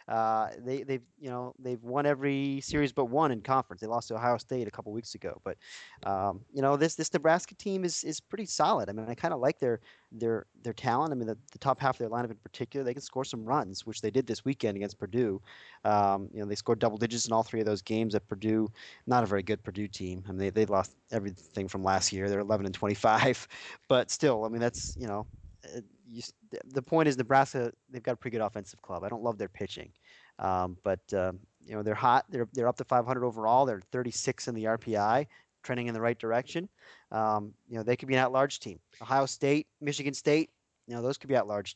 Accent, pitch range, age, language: American, 105-130 Hz, 30-49, English